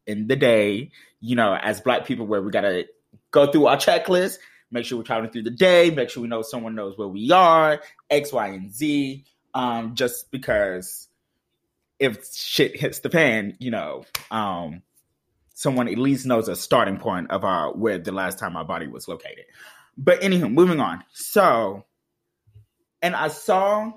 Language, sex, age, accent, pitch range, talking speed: English, male, 20-39, American, 115-180 Hz, 180 wpm